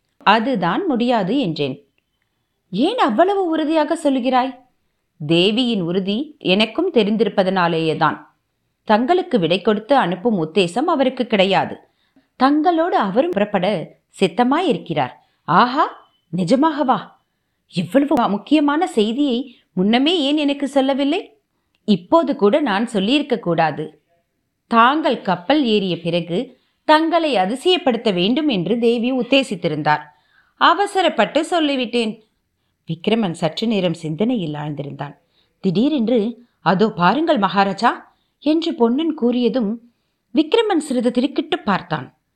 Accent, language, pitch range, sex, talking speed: native, Tamil, 185-285 Hz, female, 70 wpm